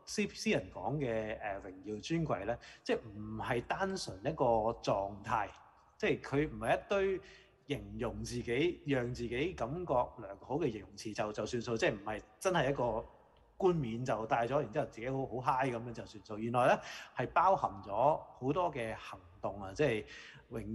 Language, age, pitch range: Chinese, 20-39, 105-140 Hz